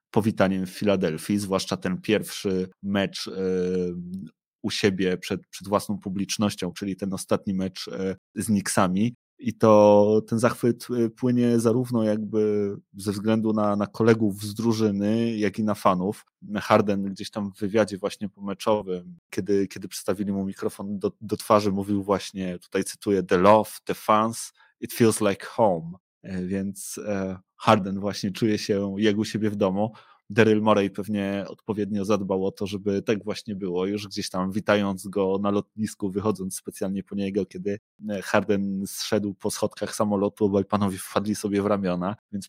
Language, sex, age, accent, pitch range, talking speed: Polish, male, 30-49, native, 100-110 Hz, 155 wpm